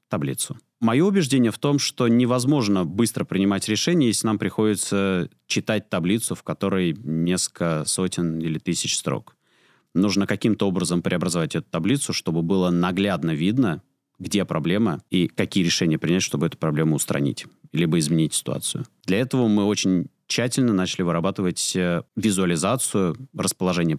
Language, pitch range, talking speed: Russian, 90-115 Hz, 135 wpm